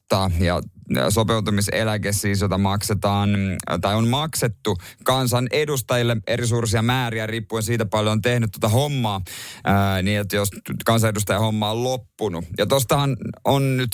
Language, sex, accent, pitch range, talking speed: Finnish, male, native, 95-125 Hz, 135 wpm